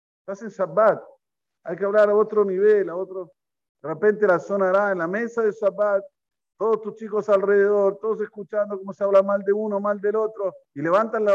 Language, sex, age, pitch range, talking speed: Spanish, male, 50-69, 160-210 Hz, 200 wpm